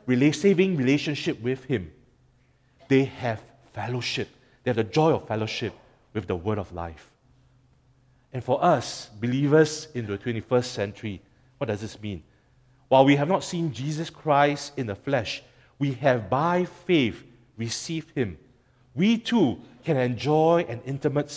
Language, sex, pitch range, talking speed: English, male, 115-150 Hz, 145 wpm